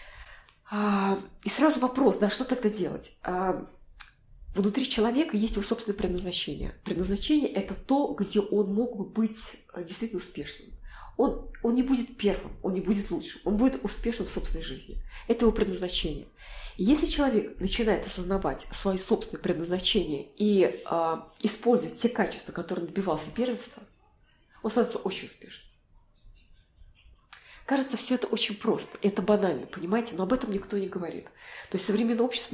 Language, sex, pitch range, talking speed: Russian, female, 185-225 Hz, 145 wpm